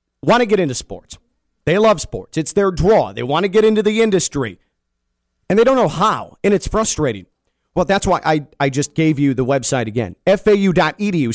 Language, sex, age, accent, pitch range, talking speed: English, male, 40-59, American, 155-195 Hz, 200 wpm